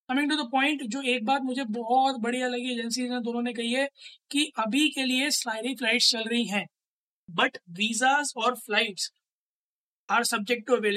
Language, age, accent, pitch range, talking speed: Hindi, 20-39, native, 210-255 Hz, 170 wpm